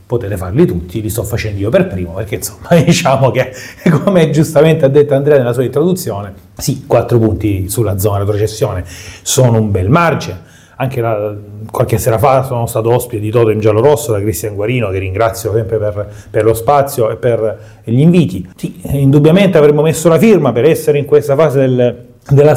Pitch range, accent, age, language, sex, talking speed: 110-155 Hz, native, 30-49, Italian, male, 190 wpm